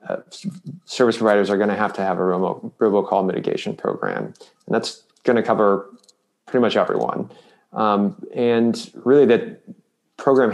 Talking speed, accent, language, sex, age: 150 wpm, American, English, male, 30-49